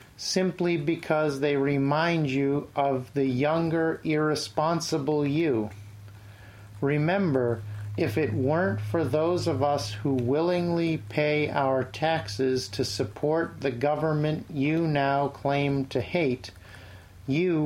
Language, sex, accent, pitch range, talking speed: English, male, American, 130-160 Hz, 110 wpm